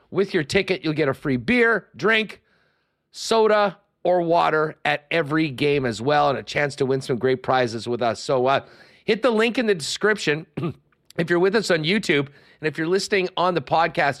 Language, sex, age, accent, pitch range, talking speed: English, male, 40-59, American, 130-175 Hz, 205 wpm